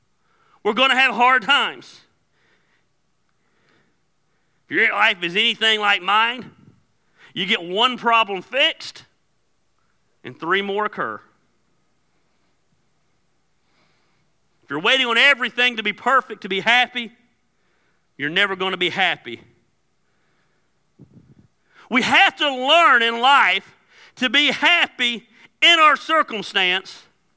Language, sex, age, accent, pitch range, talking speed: English, male, 40-59, American, 215-280 Hz, 110 wpm